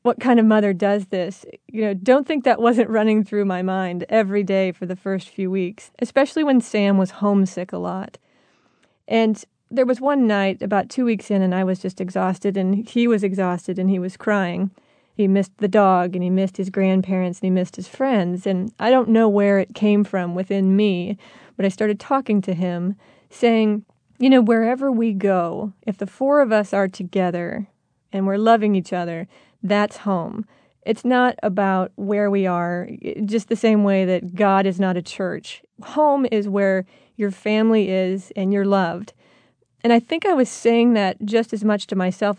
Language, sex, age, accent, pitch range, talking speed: English, female, 30-49, American, 190-230 Hz, 195 wpm